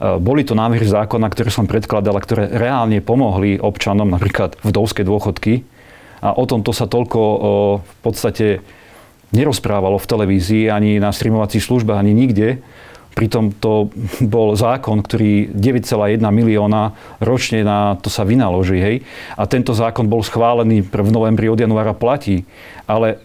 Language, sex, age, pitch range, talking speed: Slovak, male, 40-59, 105-115 Hz, 140 wpm